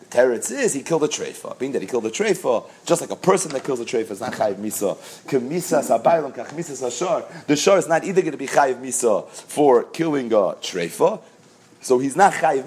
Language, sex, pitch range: English, male, 140-195 Hz